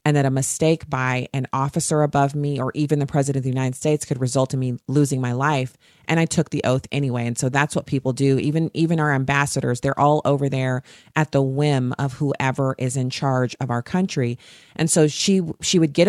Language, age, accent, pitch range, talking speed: English, 40-59, American, 135-160 Hz, 230 wpm